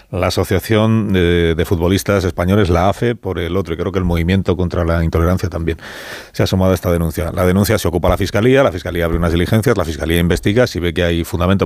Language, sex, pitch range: Spanish, male, 85-100 Hz